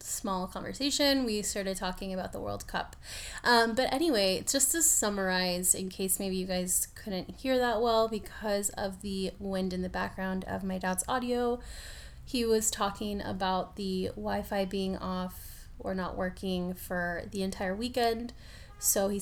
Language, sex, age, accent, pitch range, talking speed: English, female, 20-39, American, 185-220 Hz, 160 wpm